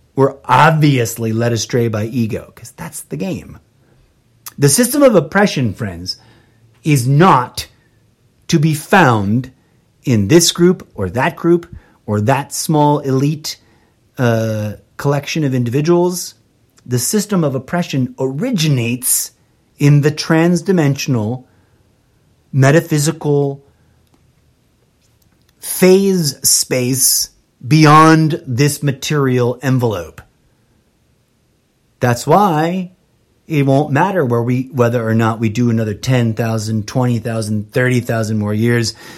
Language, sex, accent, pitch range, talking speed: English, male, American, 115-145 Hz, 105 wpm